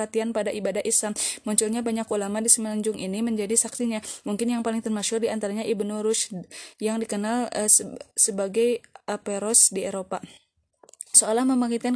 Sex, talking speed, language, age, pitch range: female, 145 wpm, Indonesian, 20-39, 210-235 Hz